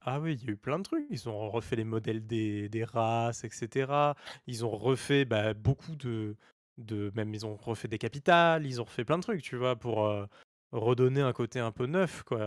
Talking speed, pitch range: 230 wpm, 110-140 Hz